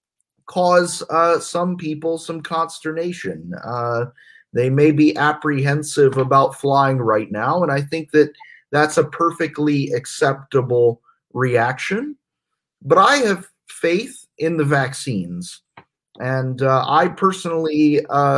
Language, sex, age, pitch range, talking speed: English, male, 30-49, 130-160 Hz, 120 wpm